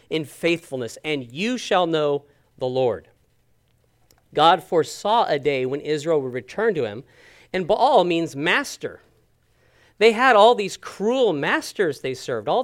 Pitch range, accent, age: 140-195 Hz, American, 40-59